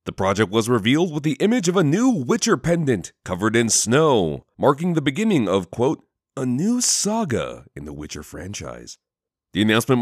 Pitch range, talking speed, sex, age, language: 95-140 Hz, 175 wpm, male, 30-49, English